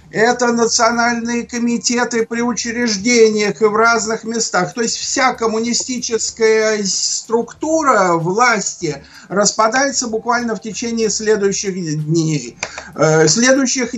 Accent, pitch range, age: native, 205-245 Hz, 50-69